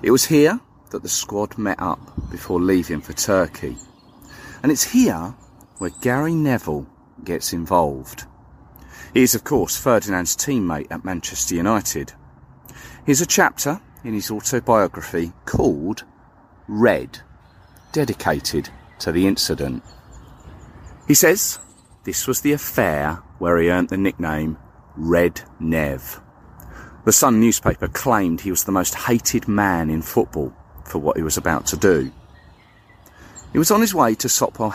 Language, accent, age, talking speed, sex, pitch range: English, British, 40-59, 140 wpm, male, 80-115 Hz